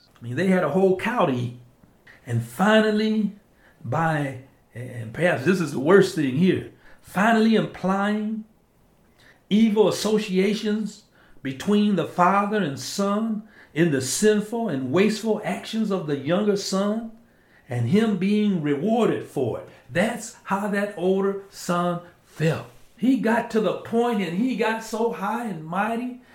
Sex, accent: male, American